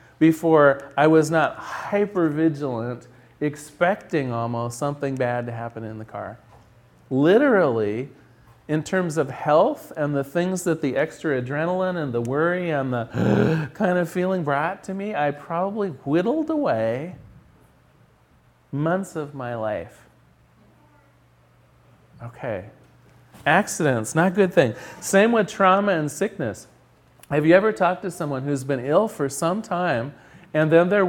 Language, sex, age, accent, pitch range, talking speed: English, male, 40-59, American, 130-180 Hz, 140 wpm